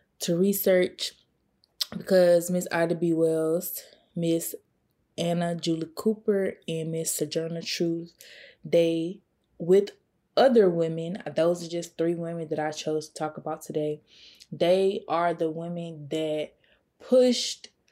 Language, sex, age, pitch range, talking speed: English, female, 20-39, 160-185 Hz, 125 wpm